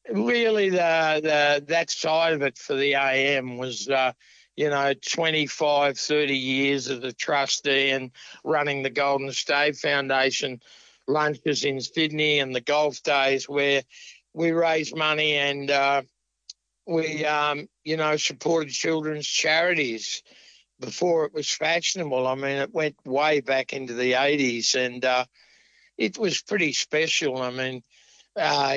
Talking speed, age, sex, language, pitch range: 140 wpm, 60-79, male, English, 130-155 Hz